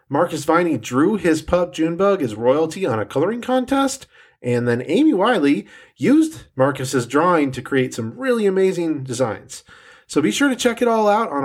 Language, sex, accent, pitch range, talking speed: English, male, American, 125-215 Hz, 180 wpm